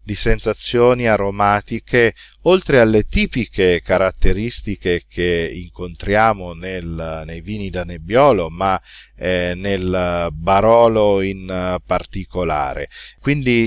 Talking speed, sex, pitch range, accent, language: 90 wpm, male, 90-115 Hz, native, Italian